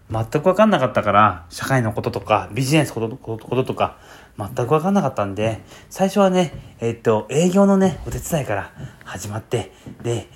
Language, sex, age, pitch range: Japanese, male, 30-49, 105-140 Hz